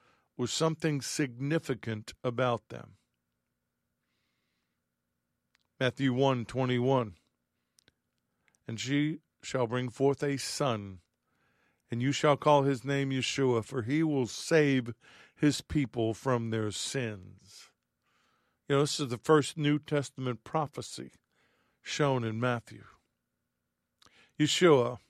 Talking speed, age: 110 wpm, 50-69